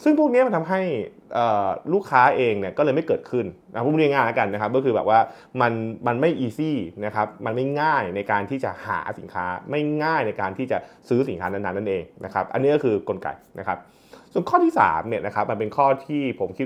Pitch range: 100-140 Hz